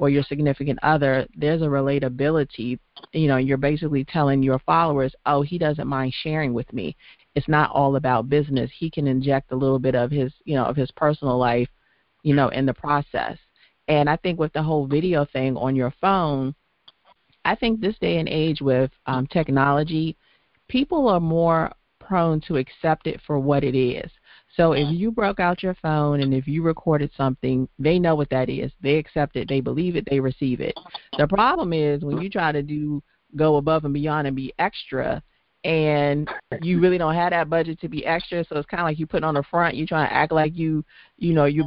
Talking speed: 210 wpm